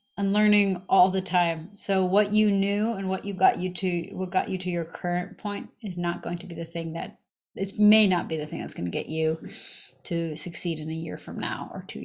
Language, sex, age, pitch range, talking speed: English, female, 30-49, 170-200 Hz, 250 wpm